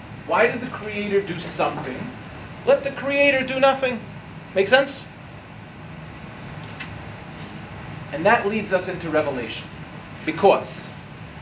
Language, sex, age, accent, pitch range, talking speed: English, male, 40-59, American, 170-240 Hz, 105 wpm